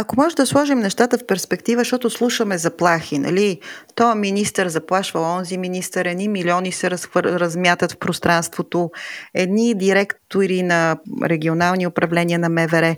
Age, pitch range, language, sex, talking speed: 30-49, 160-200 Hz, Bulgarian, female, 140 wpm